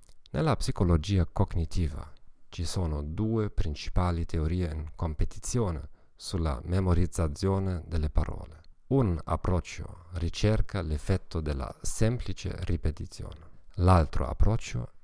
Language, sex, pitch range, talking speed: Italian, male, 80-100 Hz, 90 wpm